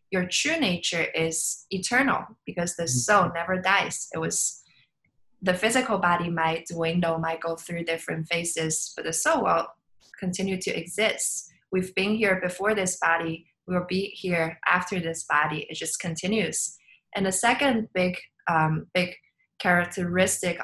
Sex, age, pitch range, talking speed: female, 20-39, 165-200 Hz, 150 wpm